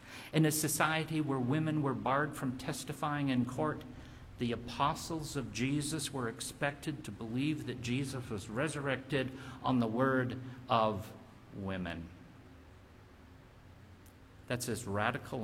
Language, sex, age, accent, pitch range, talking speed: English, male, 50-69, American, 110-145 Hz, 120 wpm